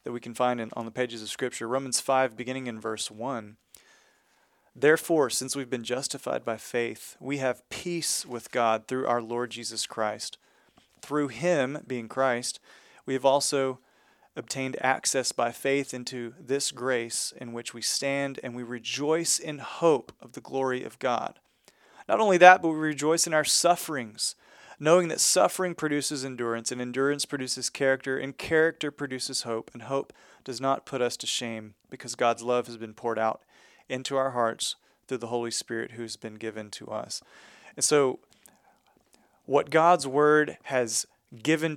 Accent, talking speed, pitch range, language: American, 170 wpm, 120-140 Hz, English